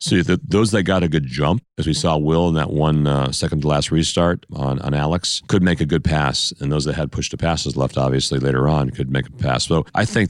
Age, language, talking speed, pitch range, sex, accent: 40-59, English, 240 wpm, 70-90 Hz, male, American